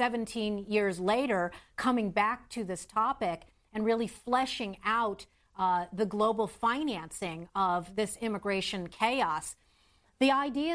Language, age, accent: English, 40-59, American